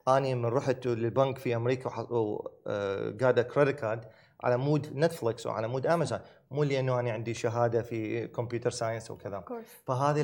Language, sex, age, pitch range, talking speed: Arabic, male, 30-49, 115-145 Hz, 150 wpm